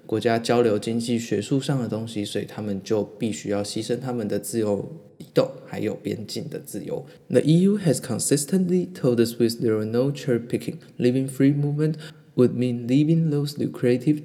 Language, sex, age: Chinese, male, 20-39